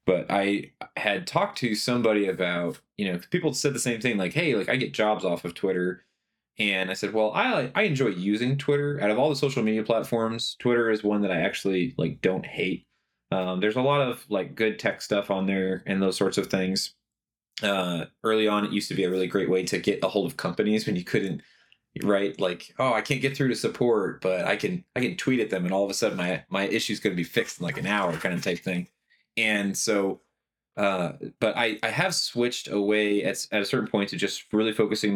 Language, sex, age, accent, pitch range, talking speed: English, male, 20-39, American, 95-110 Hz, 240 wpm